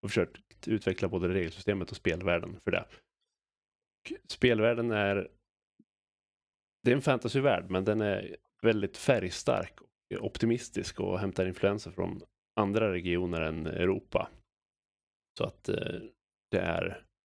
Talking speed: 125 wpm